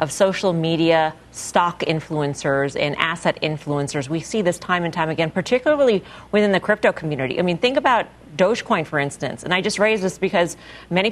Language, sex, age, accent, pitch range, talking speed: English, female, 40-59, American, 165-205 Hz, 185 wpm